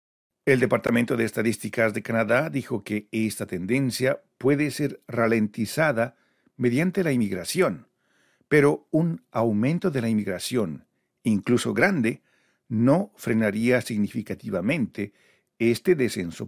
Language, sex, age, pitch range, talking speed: Spanish, male, 50-69, 105-135 Hz, 105 wpm